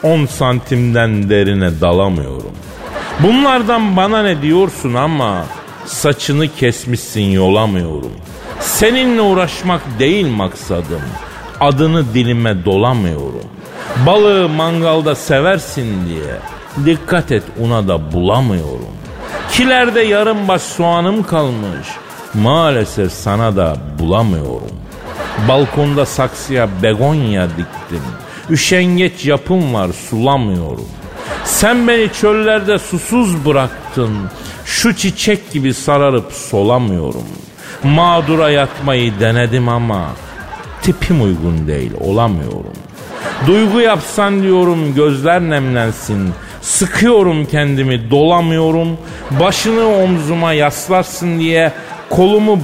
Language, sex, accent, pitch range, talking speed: Turkish, male, native, 110-175 Hz, 85 wpm